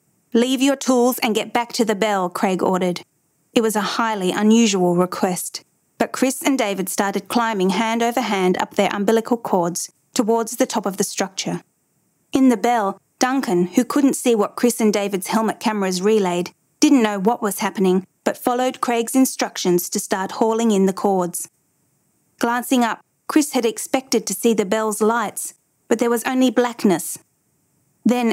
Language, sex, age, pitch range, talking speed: English, female, 30-49, 195-250 Hz, 170 wpm